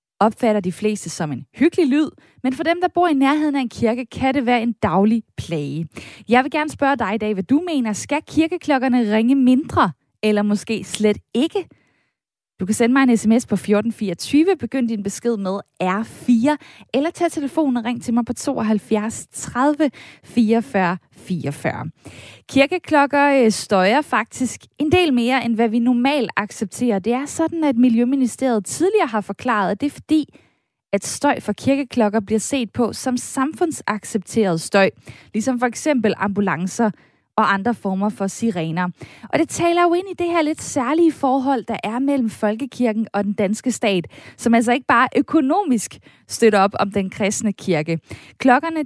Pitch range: 205-280 Hz